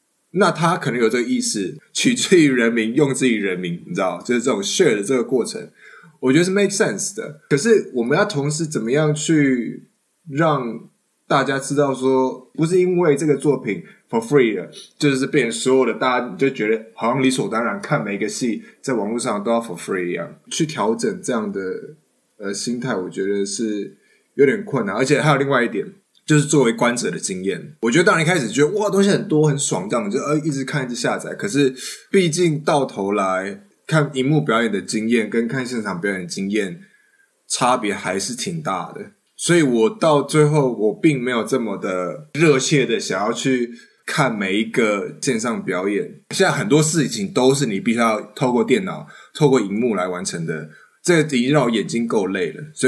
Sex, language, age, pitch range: male, Chinese, 20-39, 120-160 Hz